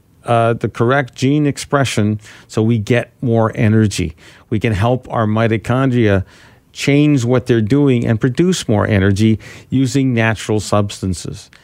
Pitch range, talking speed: 110-130 Hz, 135 wpm